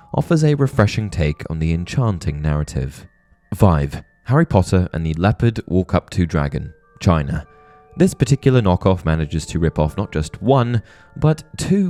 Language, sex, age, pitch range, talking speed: English, male, 20-39, 80-120 Hz, 145 wpm